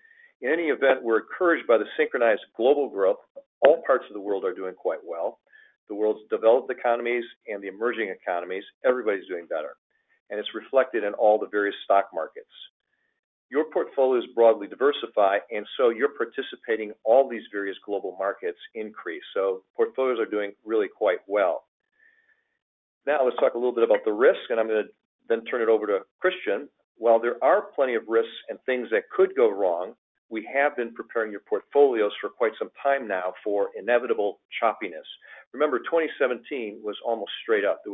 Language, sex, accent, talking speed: English, male, American, 175 wpm